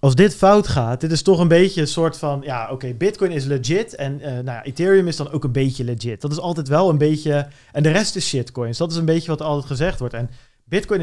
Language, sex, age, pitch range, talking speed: Dutch, male, 40-59, 140-175 Hz, 270 wpm